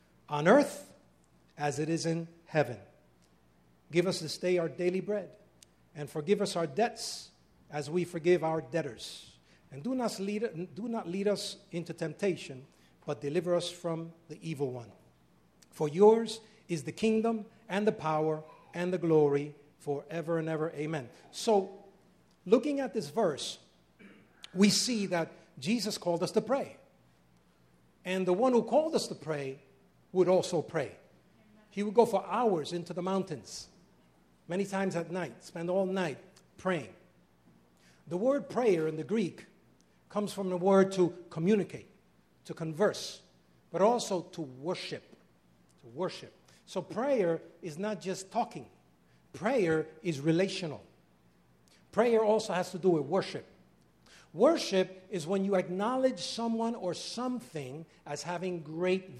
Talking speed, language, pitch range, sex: 145 wpm, English, 150-200 Hz, male